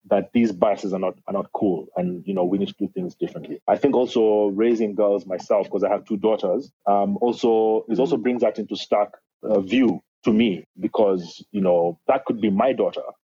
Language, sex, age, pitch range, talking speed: English, male, 30-49, 100-115 Hz, 220 wpm